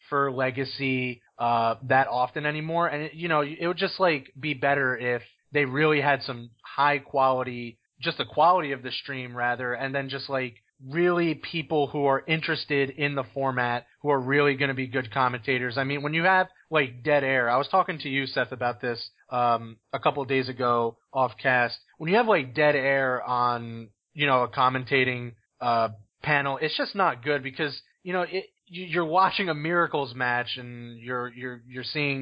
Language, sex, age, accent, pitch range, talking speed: English, male, 30-49, American, 125-150 Hz, 190 wpm